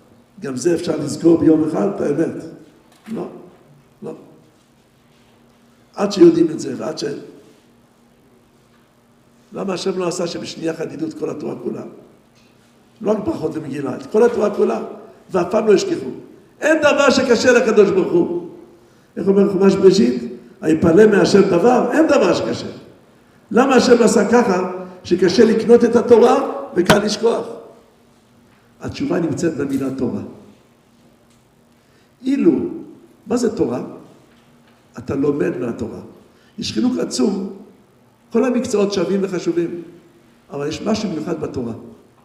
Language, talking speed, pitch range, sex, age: Hebrew, 120 wpm, 170-230 Hz, male, 60-79